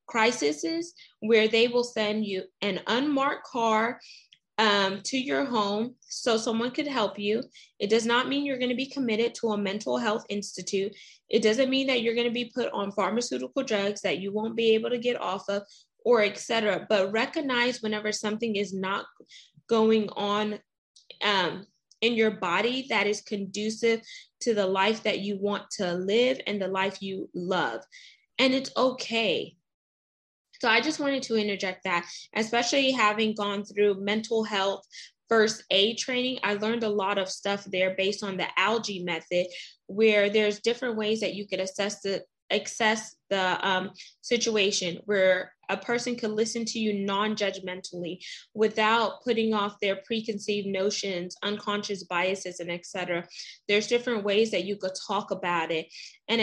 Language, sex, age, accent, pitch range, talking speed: English, female, 20-39, American, 195-230 Hz, 170 wpm